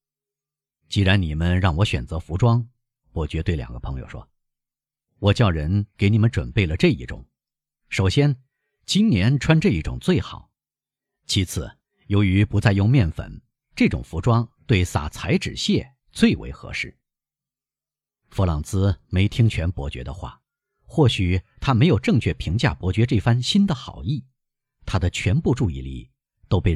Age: 50-69